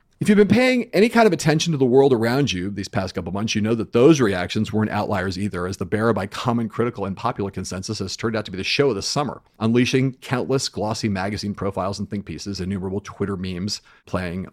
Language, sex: English, male